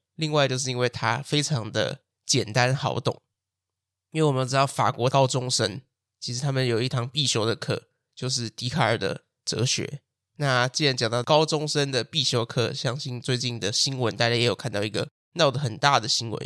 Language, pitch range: Chinese, 115-145 Hz